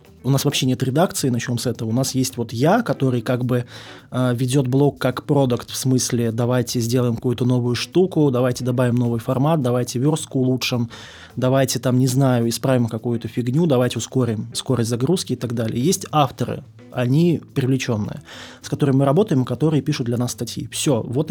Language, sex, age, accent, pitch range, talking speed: Russian, male, 20-39, native, 120-145 Hz, 180 wpm